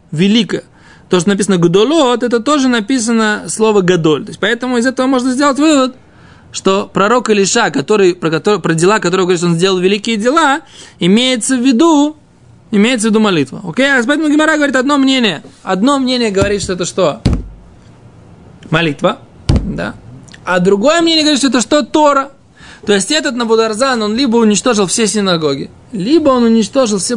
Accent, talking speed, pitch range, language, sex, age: native, 165 wpm, 180-245 Hz, Russian, male, 20-39